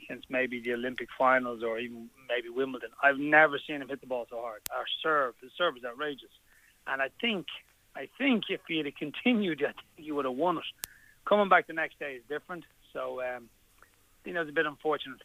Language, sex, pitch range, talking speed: English, male, 125-160 Hz, 215 wpm